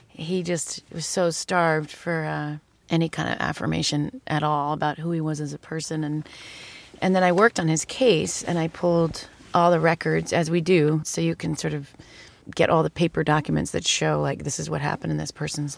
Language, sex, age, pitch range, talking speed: English, female, 30-49, 150-170 Hz, 215 wpm